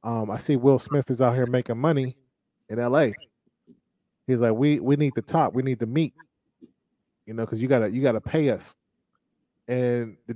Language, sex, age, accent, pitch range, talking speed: English, male, 30-49, American, 115-145 Hz, 210 wpm